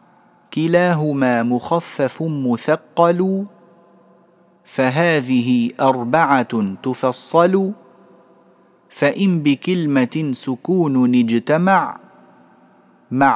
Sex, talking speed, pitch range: male, 50 wpm, 140-180 Hz